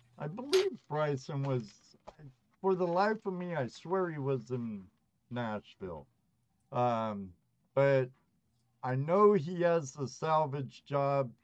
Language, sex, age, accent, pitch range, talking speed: English, male, 50-69, American, 125-175 Hz, 125 wpm